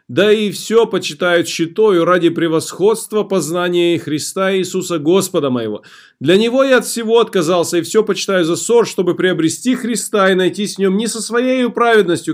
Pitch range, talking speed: 150-205 Hz, 165 wpm